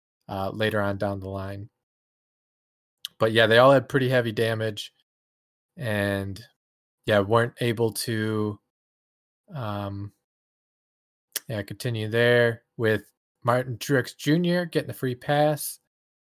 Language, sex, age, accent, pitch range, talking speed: English, male, 20-39, American, 105-125 Hz, 115 wpm